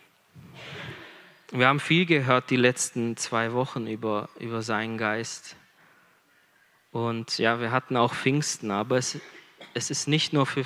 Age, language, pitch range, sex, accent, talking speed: 20-39, German, 125-155 Hz, male, German, 140 wpm